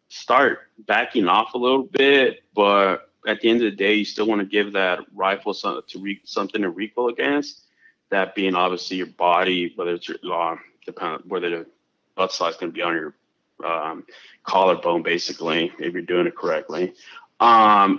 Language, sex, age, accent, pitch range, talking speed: English, male, 30-49, American, 95-110 Hz, 180 wpm